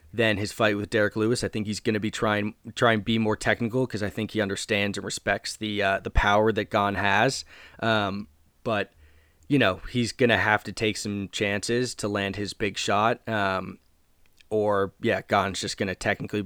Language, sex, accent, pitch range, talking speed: English, male, American, 100-115 Hz, 210 wpm